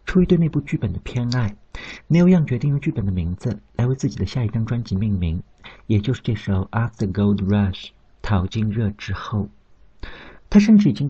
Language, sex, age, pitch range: Chinese, male, 50-69, 100-135 Hz